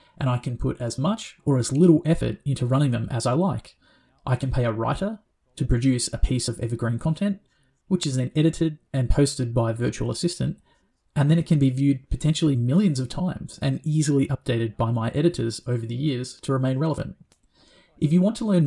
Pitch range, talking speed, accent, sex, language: 125-160 Hz, 210 wpm, Australian, male, English